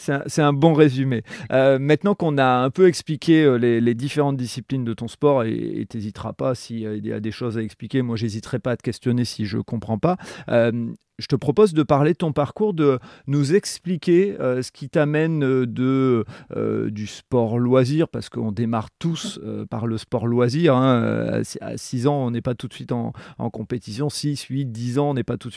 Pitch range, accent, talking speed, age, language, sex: 115-140 Hz, French, 225 wpm, 40-59, French, male